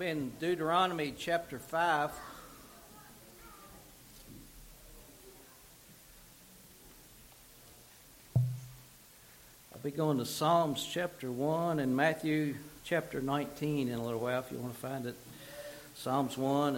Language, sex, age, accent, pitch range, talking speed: English, male, 60-79, American, 130-165 Hz, 95 wpm